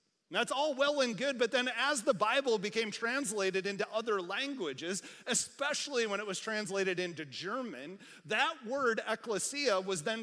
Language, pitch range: English, 180-235 Hz